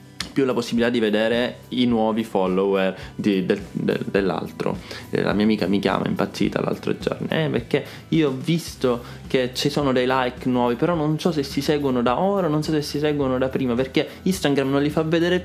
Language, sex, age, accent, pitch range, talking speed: Italian, male, 20-39, native, 105-135 Hz, 200 wpm